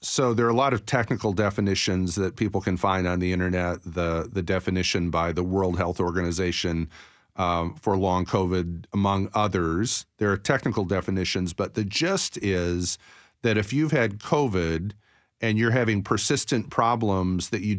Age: 40-59